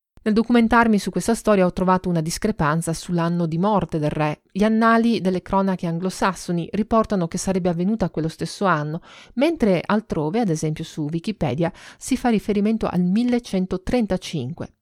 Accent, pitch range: native, 165-215 Hz